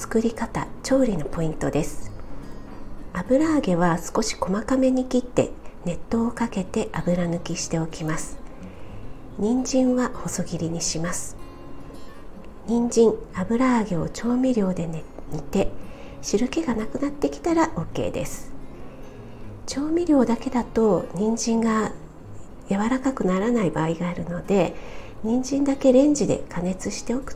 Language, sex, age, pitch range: Japanese, female, 40-59, 170-245 Hz